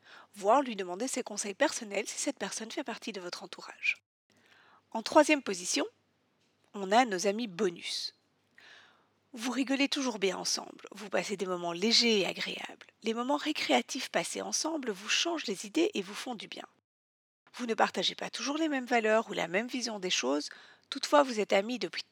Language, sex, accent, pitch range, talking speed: French, female, French, 200-255 Hz, 180 wpm